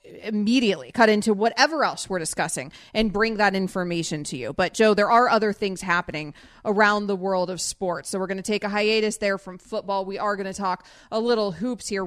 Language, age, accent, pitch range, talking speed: English, 30-49, American, 195-235 Hz, 220 wpm